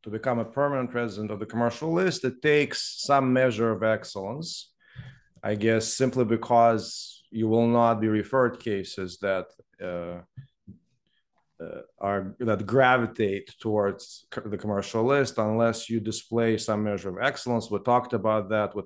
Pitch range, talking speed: 110-125 Hz, 155 wpm